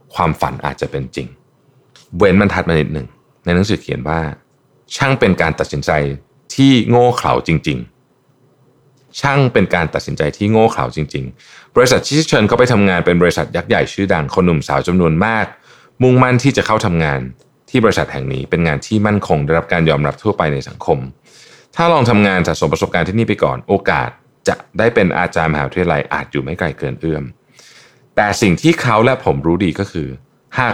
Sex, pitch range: male, 75-125 Hz